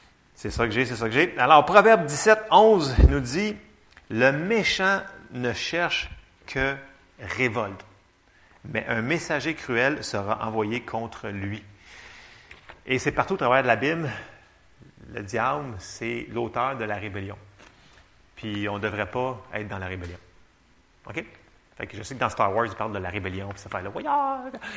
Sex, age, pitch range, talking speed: male, 30-49, 105-145 Hz, 175 wpm